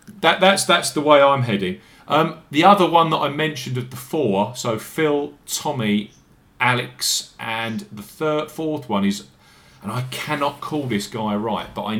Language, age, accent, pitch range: English, 40-59, British, 105-145 Hz